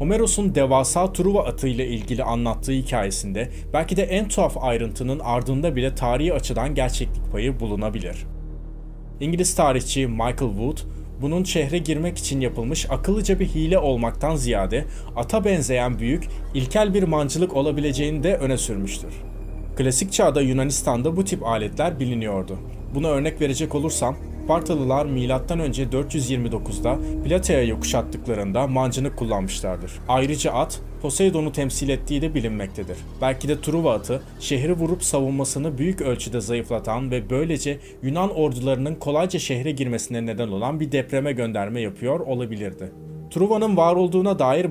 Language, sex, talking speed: Turkish, male, 130 wpm